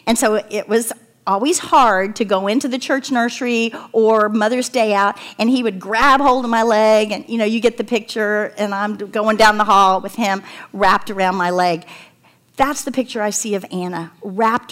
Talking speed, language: 210 wpm, English